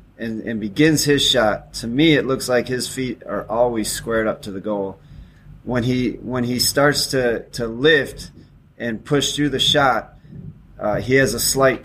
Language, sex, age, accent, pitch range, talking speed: English, male, 30-49, American, 115-130 Hz, 185 wpm